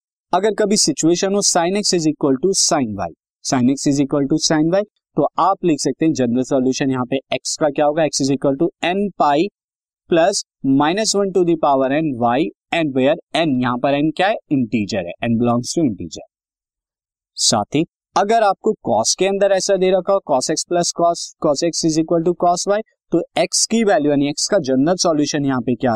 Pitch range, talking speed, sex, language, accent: 130-180 Hz, 200 wpm, male, Hindi, native